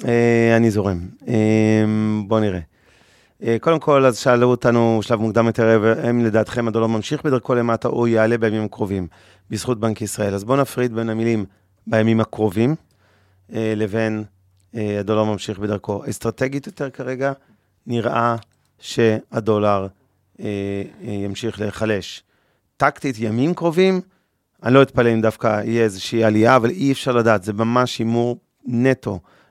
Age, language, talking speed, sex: 30-49, Hebrew, 130 wpm, male